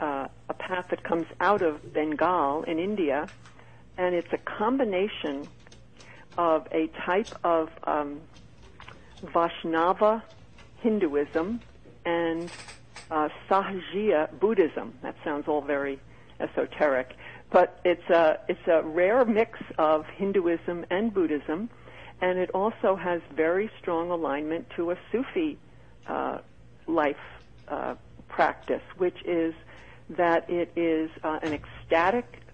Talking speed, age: 115 wpm, 60-79